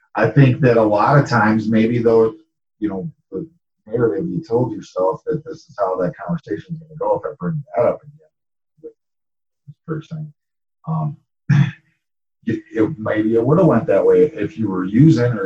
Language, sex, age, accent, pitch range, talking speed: English, male, 40-59, American, 110-155 Hz, 155 wpm